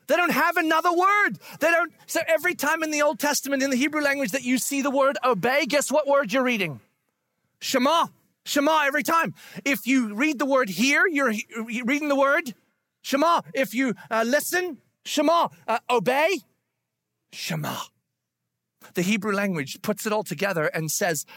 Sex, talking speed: male, 170 wpm